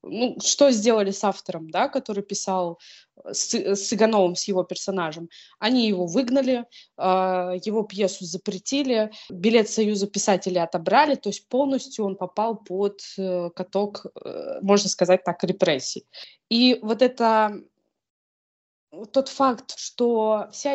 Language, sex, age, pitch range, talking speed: Russian, female, 20-39, 185-220 Hz, 125 wpm